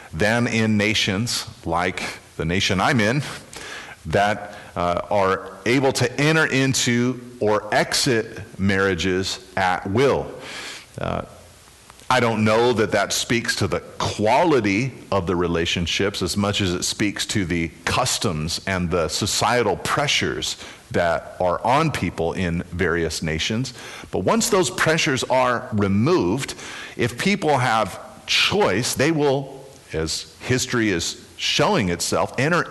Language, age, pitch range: English, 40-59, 90-125 Hz